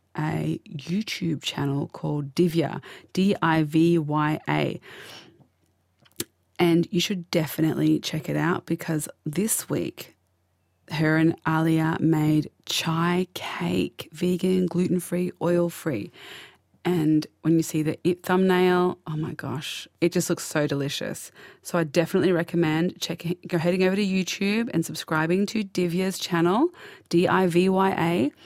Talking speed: 120 wpm